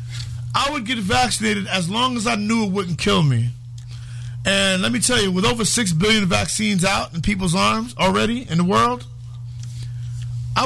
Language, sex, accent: English, male, American